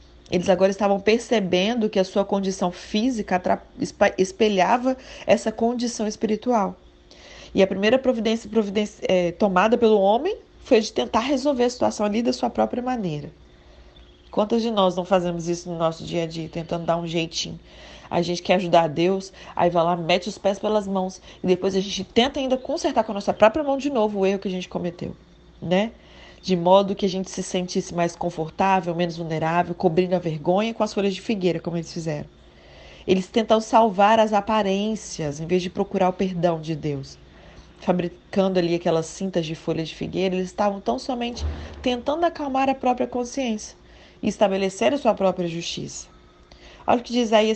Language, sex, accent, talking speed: Portuguese, female, Brazilian, 185 wpm